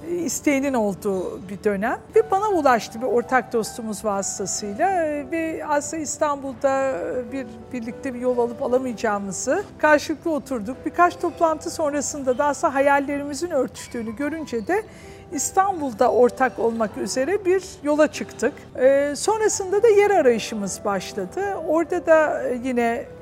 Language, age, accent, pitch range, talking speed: Turkish, 50-69, native, 240-320 Hz, 115 wpm